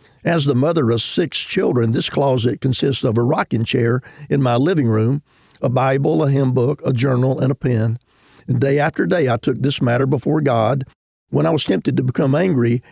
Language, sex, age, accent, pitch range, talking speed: English, male, 50-69, American, 125-145 Hz, 205 wpm